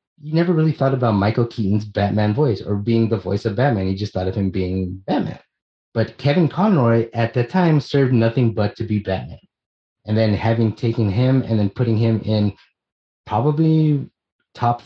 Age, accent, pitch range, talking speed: 30-49, American, 100-120 Hz, 185 wpm